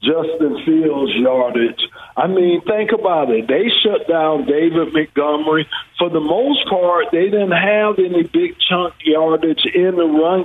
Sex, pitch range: male, 160-210 Hz